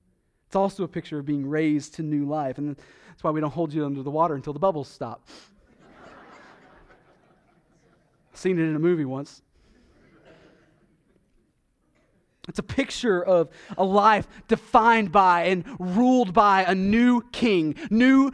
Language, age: English, 30-49